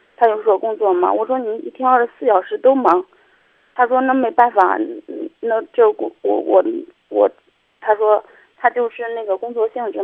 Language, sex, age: Chinese, female, 20-39